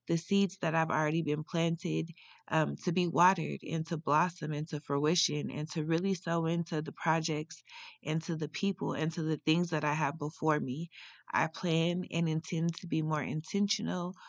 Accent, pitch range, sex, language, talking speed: American, 150-175 Hz, female, English, 175 wpm